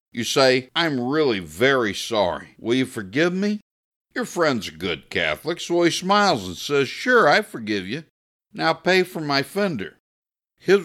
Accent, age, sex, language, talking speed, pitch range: American, 60-79, male, English, 165 wpm, 115-165 Hz